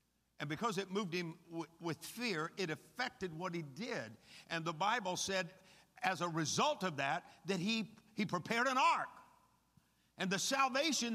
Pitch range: 170-235 Hz